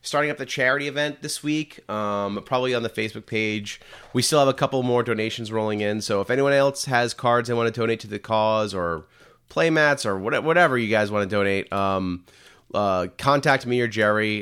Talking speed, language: 210 wpm, English